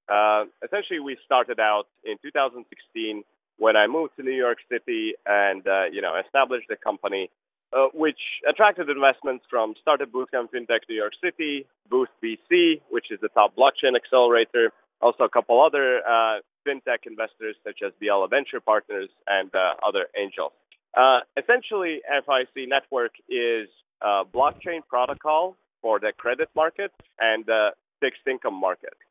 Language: English